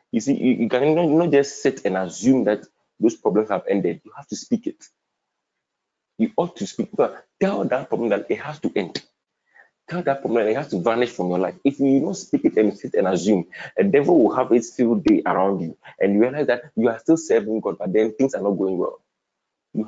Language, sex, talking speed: English, male, 250 wpm